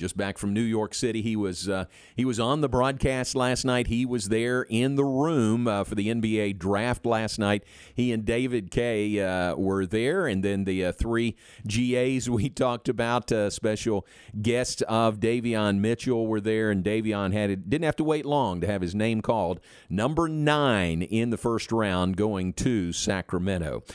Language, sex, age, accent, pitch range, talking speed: English, male, 40-59, American, 100-125 Hz, 190 wpm